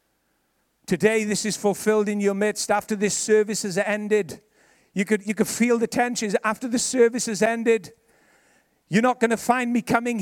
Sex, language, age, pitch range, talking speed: male, English, 50-69, 210-245 Hz, 175 wpm